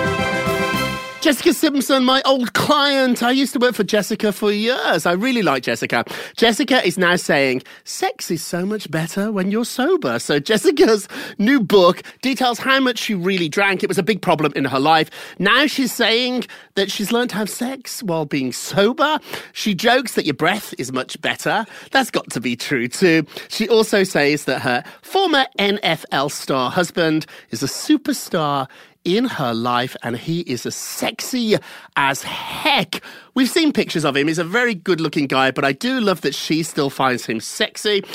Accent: British